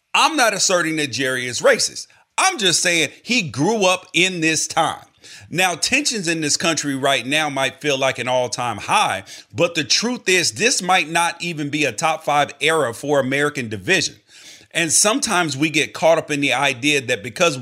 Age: 40-59